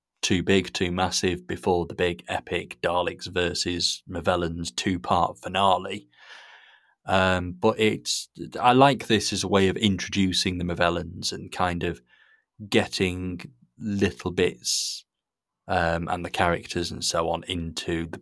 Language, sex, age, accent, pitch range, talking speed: English, male, 30-49, British, 85-95 Hz, 135 wpm